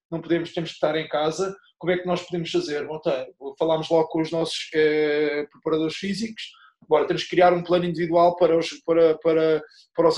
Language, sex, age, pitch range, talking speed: English, male, 20-39, 160-185 Hz, 210 wpm